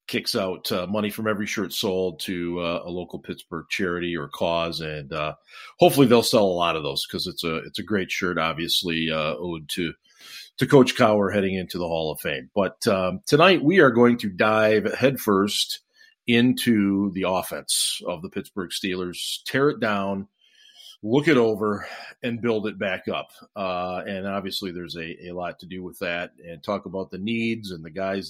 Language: English